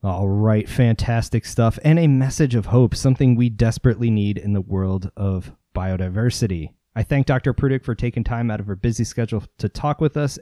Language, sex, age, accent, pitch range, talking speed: English, male, 30-49, American, 105-130 Hz, 195 wpm